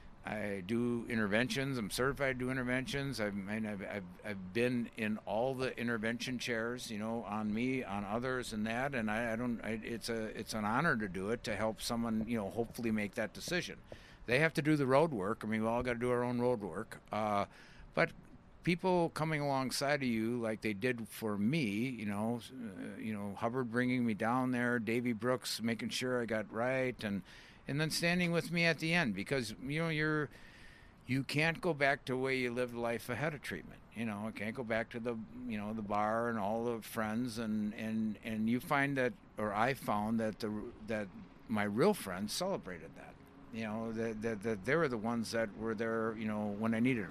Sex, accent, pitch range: male, American, 110-135 Hz